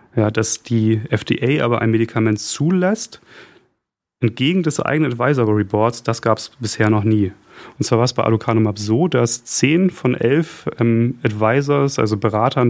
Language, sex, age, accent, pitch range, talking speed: German, male, 30-49, German, 115-135 Hz, 160 wpm